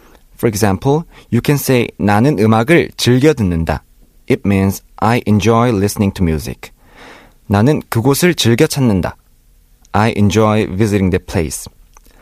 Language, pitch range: Korean, 100-140 Hz